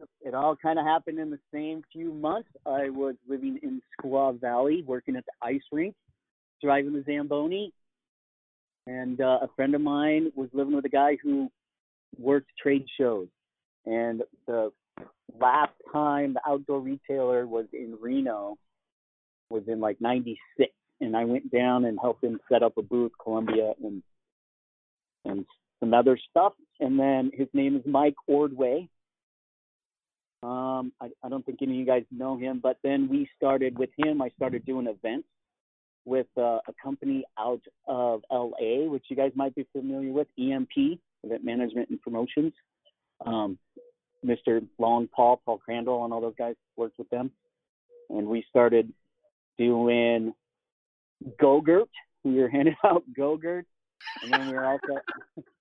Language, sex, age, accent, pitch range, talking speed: English, male, 40-59, American, 120-150 Hz, 155 wpm